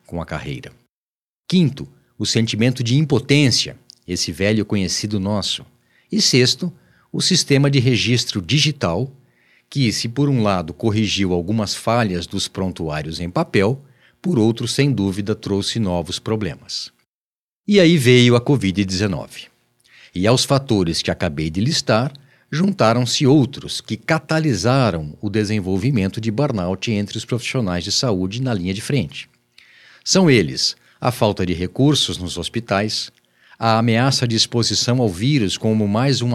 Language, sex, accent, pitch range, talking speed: Portuguese, male, Brazilian, 100-130 Hz, 140 wpm